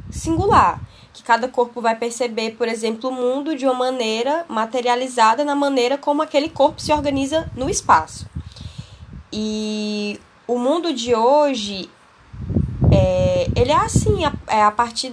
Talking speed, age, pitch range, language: 130 wpm, 10-29, 210-255 Hz, Portuguese